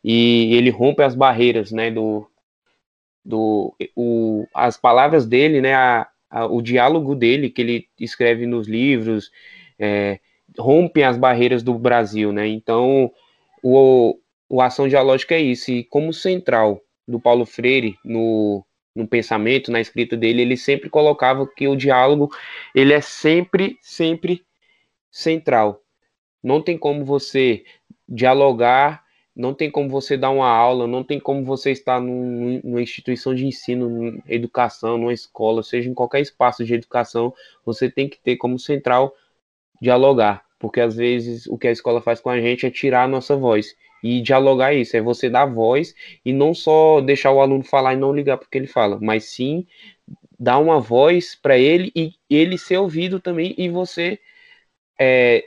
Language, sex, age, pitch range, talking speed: Portuguese, male, 20-39, 120-145 Hz, 165 wpm